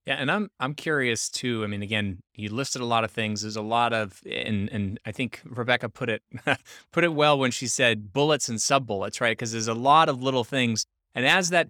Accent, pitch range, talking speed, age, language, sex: American, 115-140 Hz, 240 wpm, 20-39, English, male